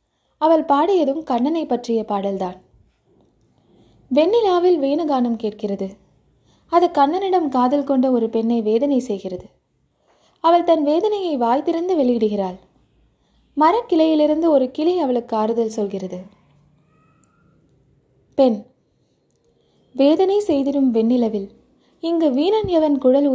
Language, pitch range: Tamil, 220-305 Hz